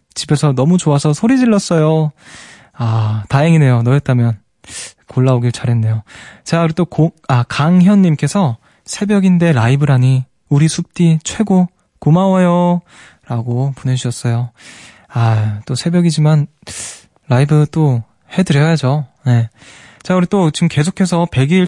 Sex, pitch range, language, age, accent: male, 125-165 Hz, Korean, 20-39, native